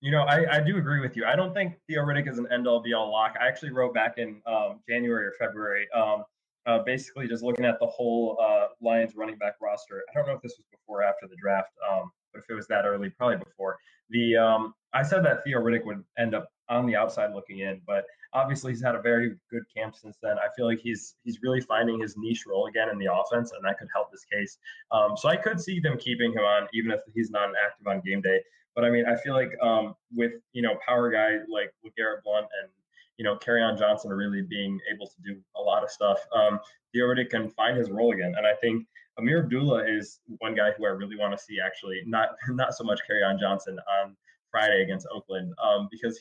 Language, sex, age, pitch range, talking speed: English, male, 20-39, 105-130 Hz, 240 wpm